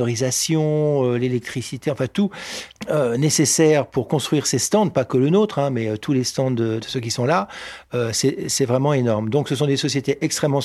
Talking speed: 205 wpm